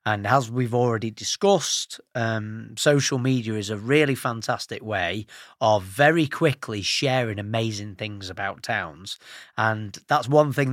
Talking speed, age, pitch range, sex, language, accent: 140 wpm, 30-49, 110-150 Hz, male, English, British